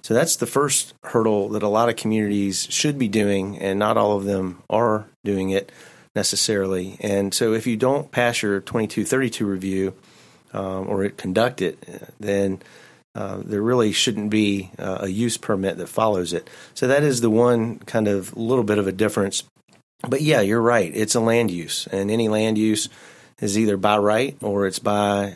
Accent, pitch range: American, 95-110 Hz